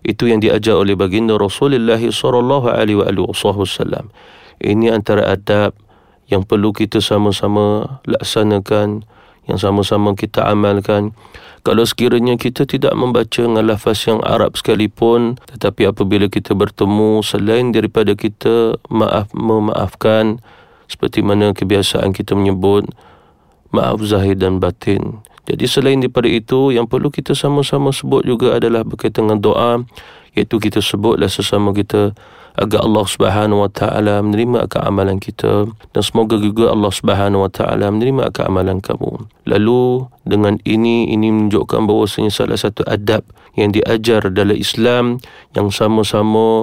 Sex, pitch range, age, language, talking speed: male, 100-115 Hz, 40-59, Malay, 130 wpm